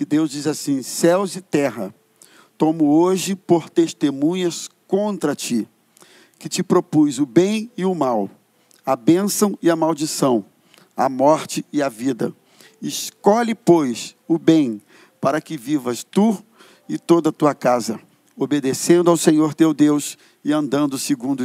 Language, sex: Portuguese, male